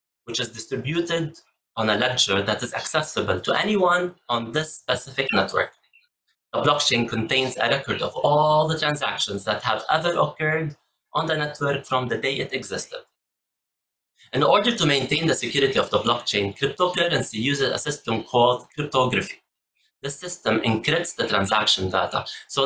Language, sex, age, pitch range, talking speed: English, male, 30-49, 110-150 Hz, 155 wpm